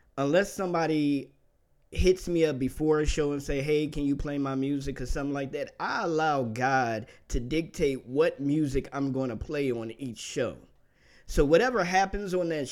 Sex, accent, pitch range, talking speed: male, American, 135-175 Hz, 185 wpm